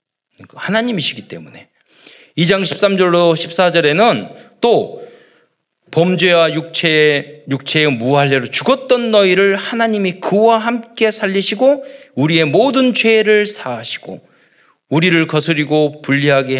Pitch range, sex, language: 150-220 Hz, male, Korean